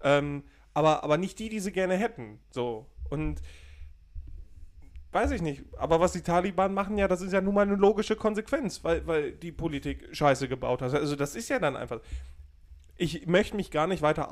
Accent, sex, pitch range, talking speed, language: German, male, 145-200 Hz, 195 wpm, German